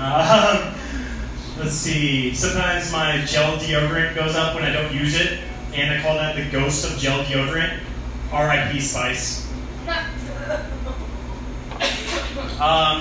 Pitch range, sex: 125-165 Hz, male